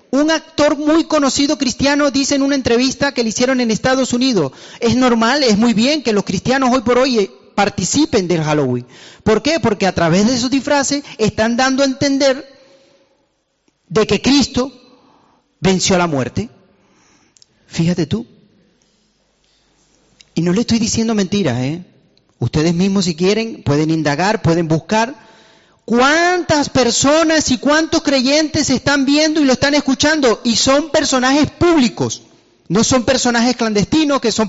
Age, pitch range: 40-59, 160-265 Hz